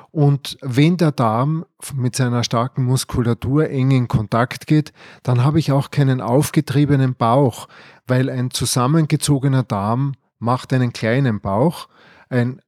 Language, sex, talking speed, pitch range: German, male, 135 wpm, 125-150 Hz